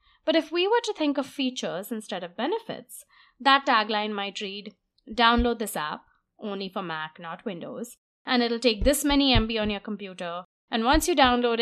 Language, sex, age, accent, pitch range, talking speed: English, female, 20-39, Indian, 190-260 Hz, 185 wpm